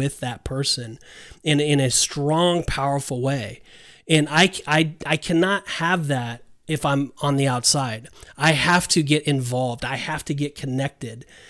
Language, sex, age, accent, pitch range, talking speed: English, male, 30-49, American, 140-165 Hz, 160 wpm